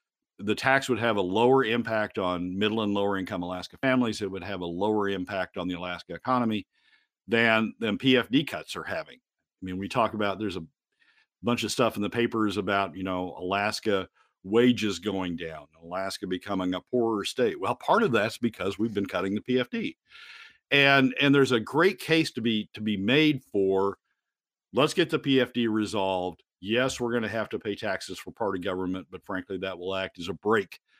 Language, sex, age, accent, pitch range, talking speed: English, male, 50-69, American, 90-120 Hz, 195 wpm